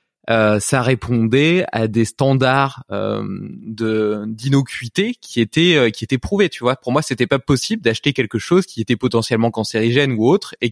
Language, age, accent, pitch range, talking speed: French, 20-39, French, 115-140 Hz, 180 wpm